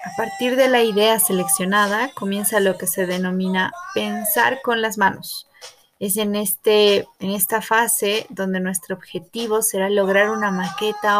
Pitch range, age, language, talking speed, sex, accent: 185-235 Hz, 30-49, Spanish, 145 wpm, female, Mexican